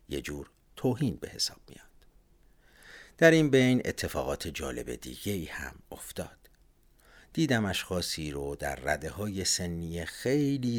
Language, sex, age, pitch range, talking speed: Persian, male, 60-79, 80-135 Hz, 130 wpm